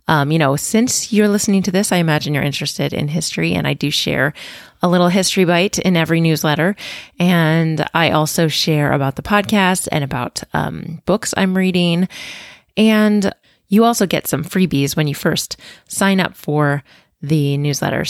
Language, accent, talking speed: English, American, 170 wpm